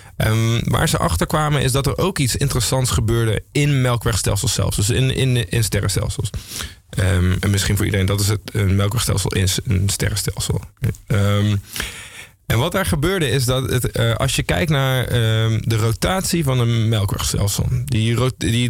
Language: Dutch